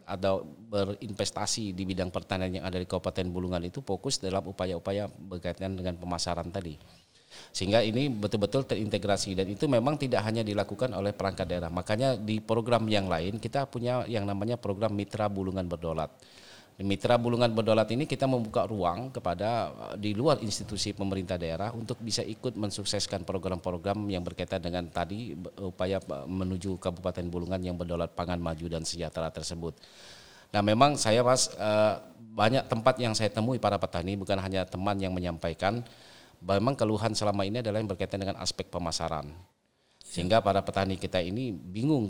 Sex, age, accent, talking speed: male, 30-49, native, 155 wpm